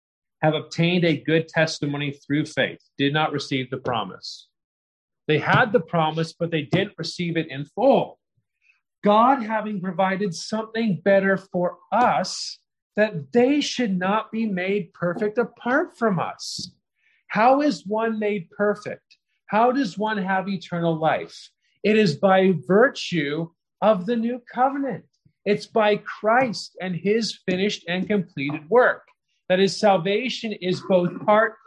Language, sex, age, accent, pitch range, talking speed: English, male, 40-59, American, 165-220 Hz, 140 wpm